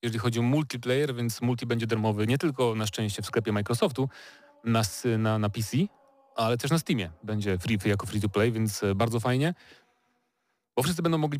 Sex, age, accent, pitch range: male, 30-49, native, 105-130 Hz